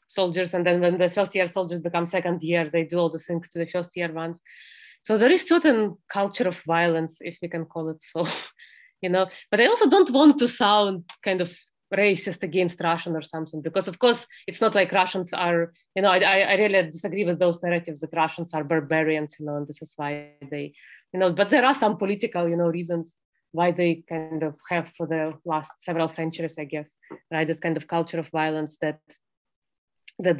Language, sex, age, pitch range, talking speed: English, female, 20-39, 165-190 Hz, 215 wpm